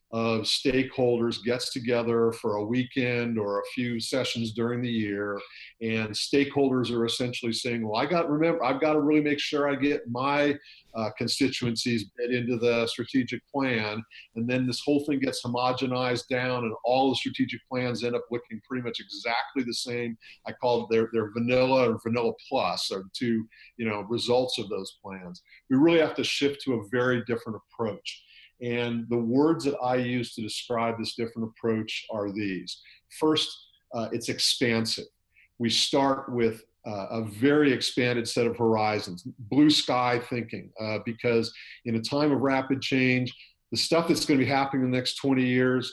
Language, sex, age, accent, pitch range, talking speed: English, male, 50-69, American, 115-130 Hz, 180 wpm